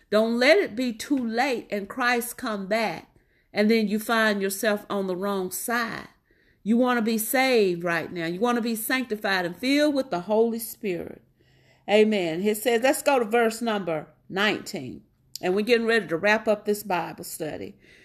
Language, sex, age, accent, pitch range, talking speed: English, female, 50-69, American, 200-250 Hz, 185 wpm